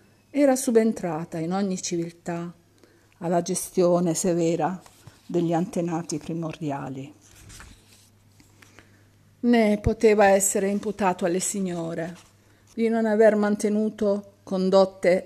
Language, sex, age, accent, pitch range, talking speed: Italian, female, 50-69, native, 160-200 Hz, 85 wpm